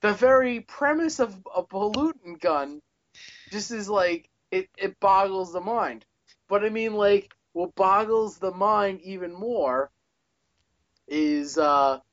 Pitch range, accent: 140-180 Hz, American